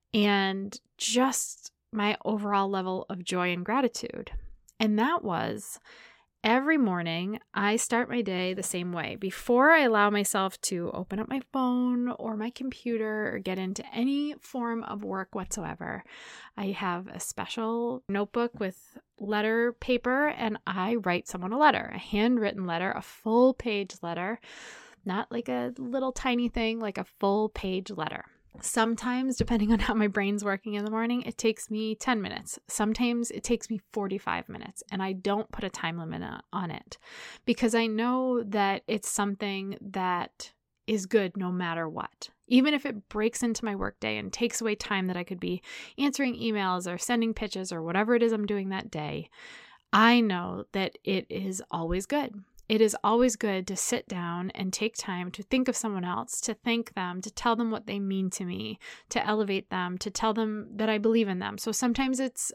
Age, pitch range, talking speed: 20-39, 195-235 Hz, 180 wpm